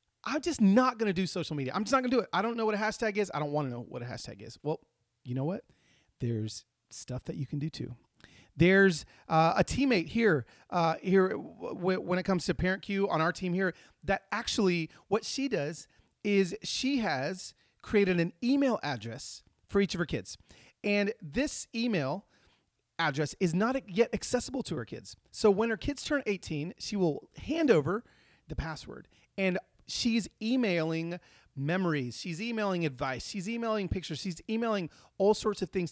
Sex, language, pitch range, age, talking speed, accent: male, English, 140-210 Hz, 30-49, 195 wpm, American